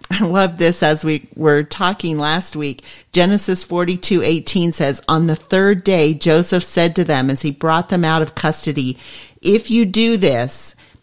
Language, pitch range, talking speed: English, 150-185 Hz, 180 wpm